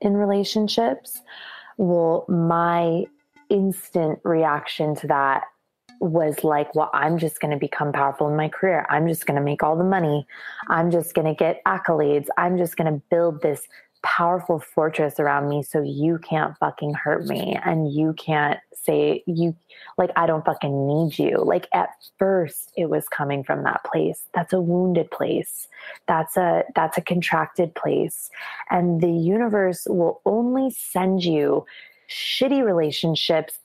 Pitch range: 155-190 Hz